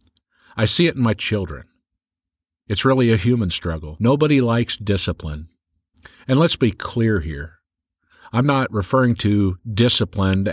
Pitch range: 85-120 Hz